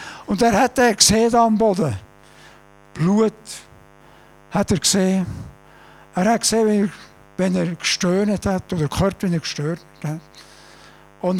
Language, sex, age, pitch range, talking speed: German, male, 60-79, 150-220 Hz, 135 wpm